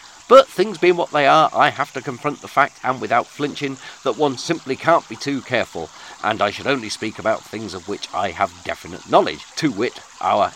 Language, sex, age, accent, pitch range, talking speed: English, male, 40-59, British, 105-155 Hz, 215 wpm